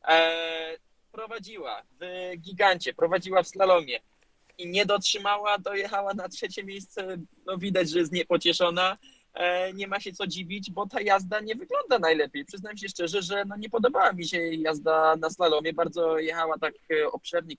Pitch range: 165-200 Hz